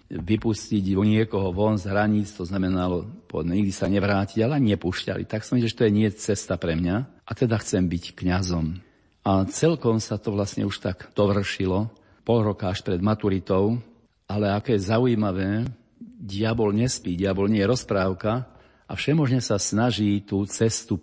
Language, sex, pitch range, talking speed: Slovak, male, 95-110 Hz, 170 wpm